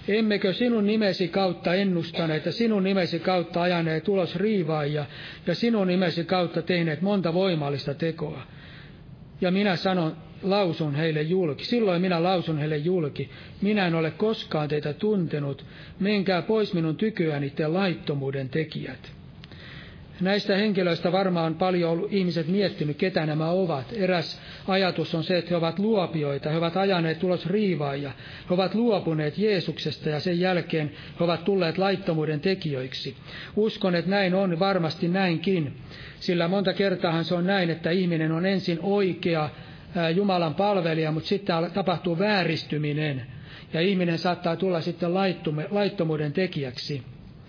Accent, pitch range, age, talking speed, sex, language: native, 155-190 Hz, 60-79, 140 wpm, male, Finnish